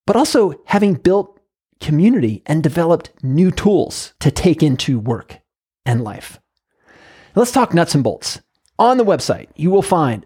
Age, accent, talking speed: 30-49, American, 150 wpm